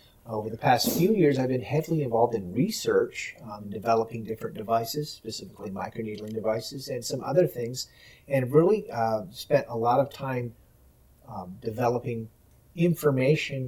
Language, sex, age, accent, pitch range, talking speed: English, male, 40-59, American, 115-140 Hz, 145 wpm